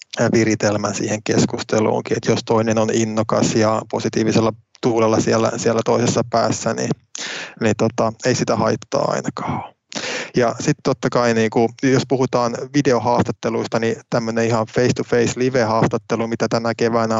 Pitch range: 110-120 Hz